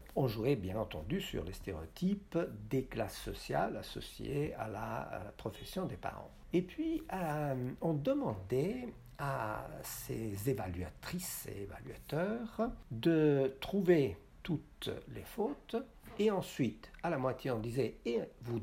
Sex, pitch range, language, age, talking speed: male, 110-180 Hz, French, 60-79, 130 wpm